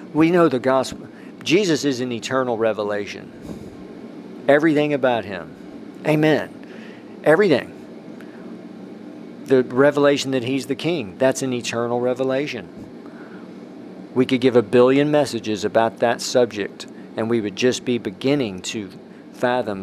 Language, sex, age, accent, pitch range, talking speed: English, male, 50-69, American, 110-130 Hz, 125 wpm